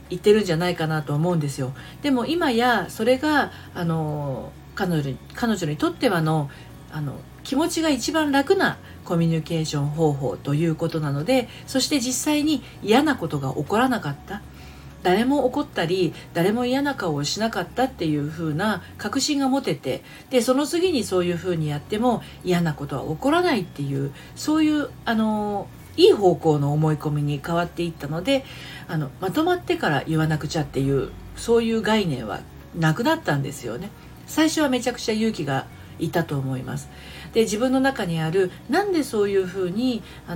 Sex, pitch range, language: female, 150-245 Hz, Japanese